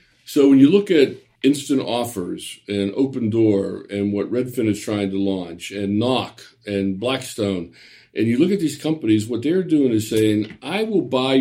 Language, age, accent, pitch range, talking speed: English, 50-69, American, 105-155 Hz, 185 wpm